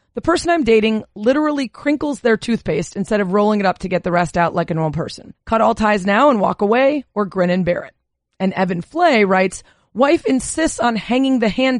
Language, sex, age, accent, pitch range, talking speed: English, female, 30-49, American, 190-245 Hz, 225 wpm